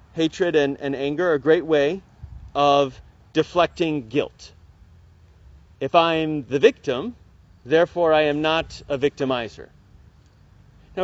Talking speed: 120 wpm